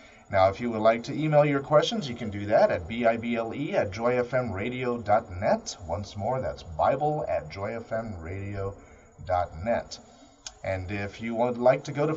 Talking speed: 155 wpm